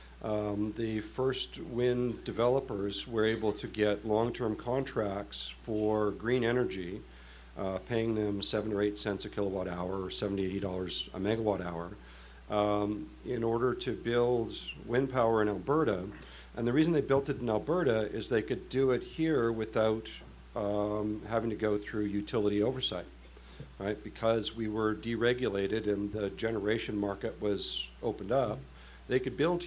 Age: 50-69